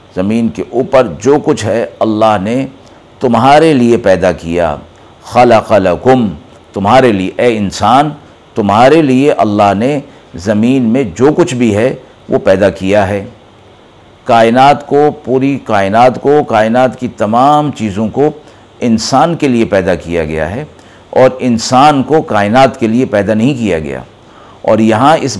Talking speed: 145 wpm